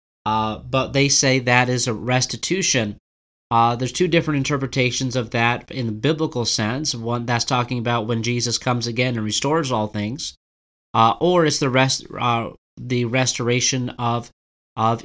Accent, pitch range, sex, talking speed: American, 120-145 Hz, male, 165 wpm